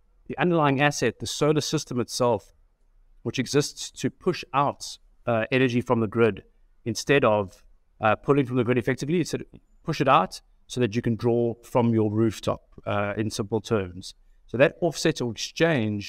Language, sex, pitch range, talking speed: English, male, 105-130 Hz, 175 wpm